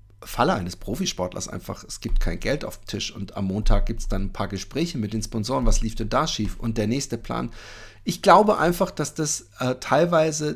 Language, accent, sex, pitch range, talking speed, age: German, German, male, 105-135 Hz, 220 wpm, 40-59